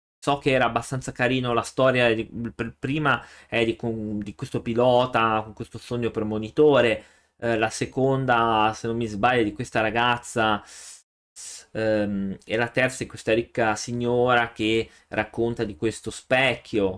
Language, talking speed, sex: Italian, 155 wpm, male